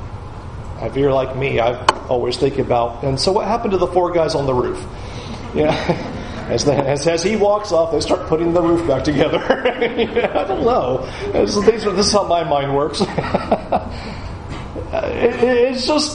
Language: English